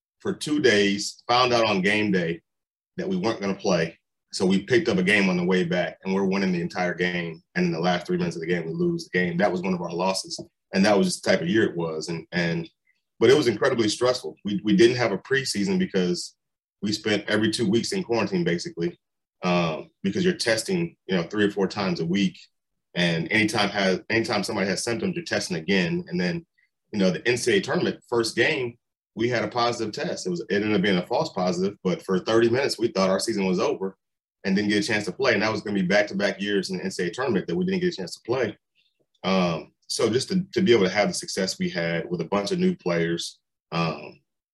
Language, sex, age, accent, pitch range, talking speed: English, male, 30-49, American, 90-120 Hz, 245 wpm